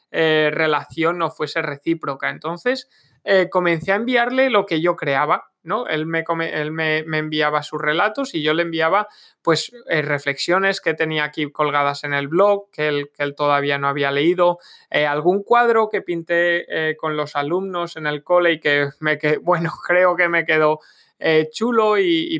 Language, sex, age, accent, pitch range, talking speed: Spanish, male, 20-39, Spanish, 150-185 Hz, 190 wpm